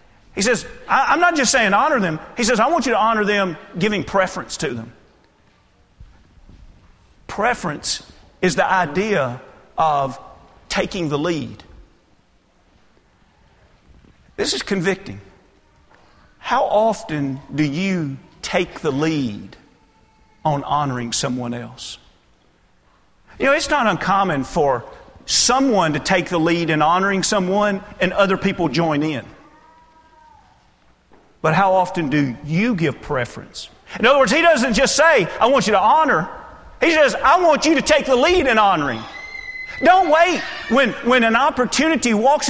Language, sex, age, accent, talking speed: English, male, 40-59, American, 140 wpm